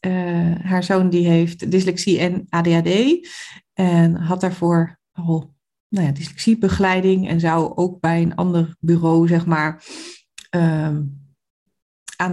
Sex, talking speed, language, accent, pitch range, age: female, 100 wpm, Dutch, Dutch, 175-215 Hz, 40-59